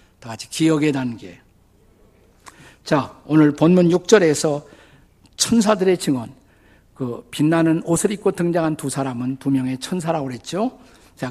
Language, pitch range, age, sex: Korean, 135-200 Hz, 50-69, male